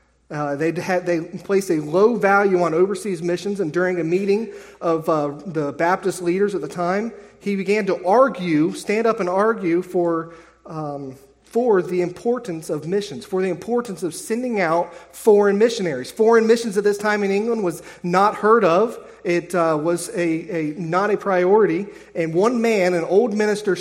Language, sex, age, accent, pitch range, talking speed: English, male, 30-49, American, 155-200 Hz, 180 wpm